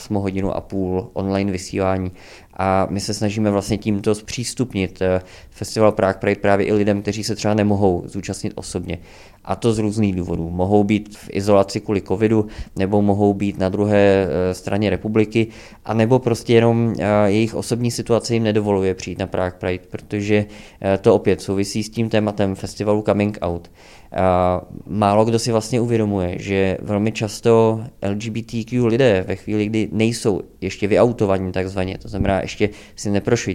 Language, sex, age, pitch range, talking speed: Czech, male, 20-39, 95-110 Hz, 155 wpm